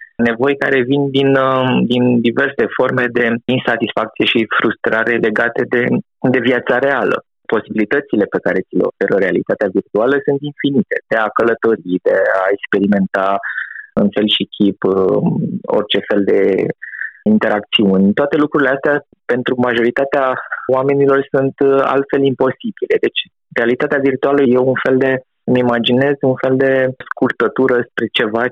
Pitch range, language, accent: 120-140 Hz, Romanian, native